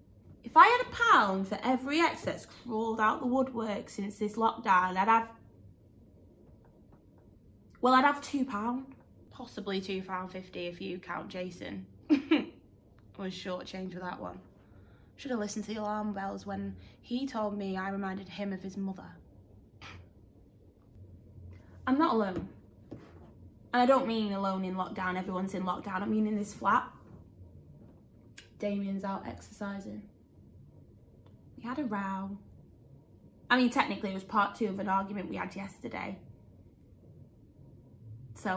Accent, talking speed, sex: British, 145 wpm, female